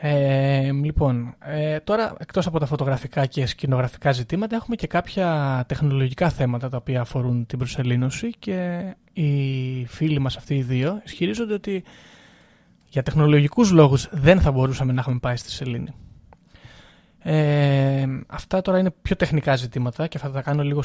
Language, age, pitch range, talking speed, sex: Greek, 20-39, 130-165 Hz, 150 wpm, male